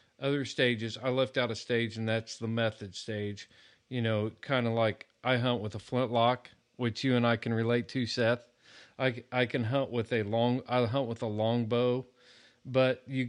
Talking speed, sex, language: 200 wpm, male, English